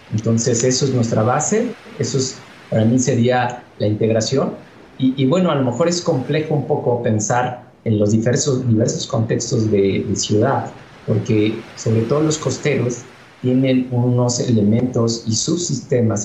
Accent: Mexican